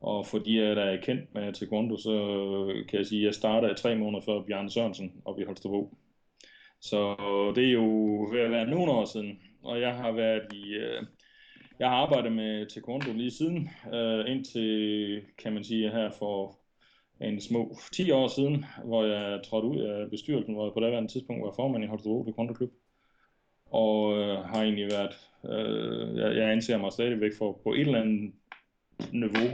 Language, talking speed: Danish, 175 wpm